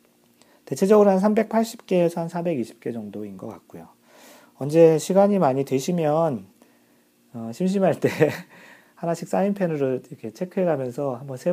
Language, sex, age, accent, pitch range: Korean, male, 40-59, native, 110-165 Hz